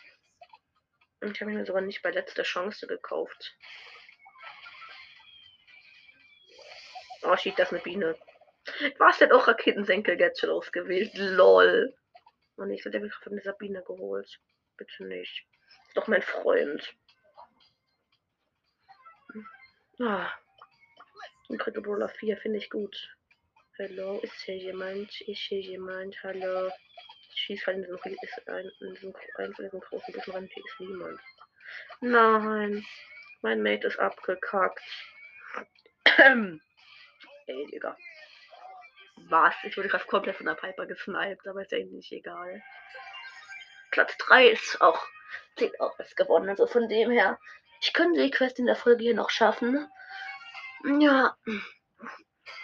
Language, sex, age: German, female, 20-39